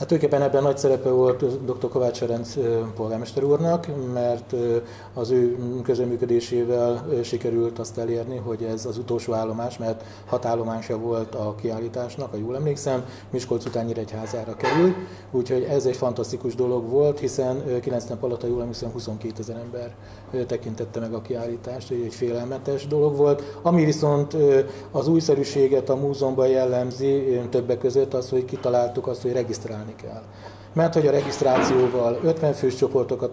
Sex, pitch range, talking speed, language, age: male, 115-135 Hz, 155 wpm, Hungarian, 30-49